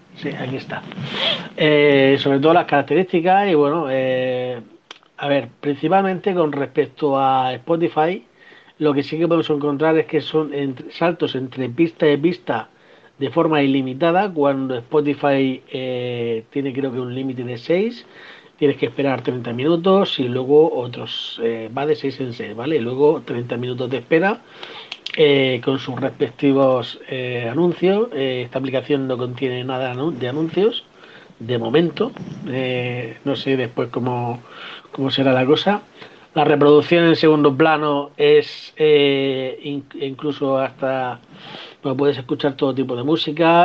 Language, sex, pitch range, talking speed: Spanish, male, 130-155 Hz, 145 wpm